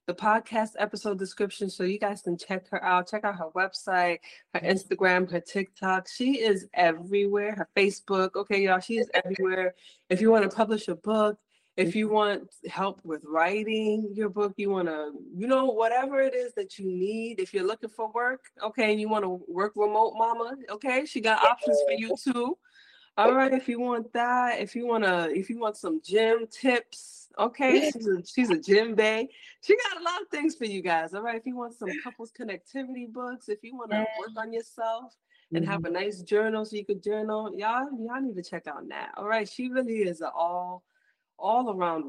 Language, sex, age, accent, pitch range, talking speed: English, female, 20-39, American, 180-230 Hz, 210 wpm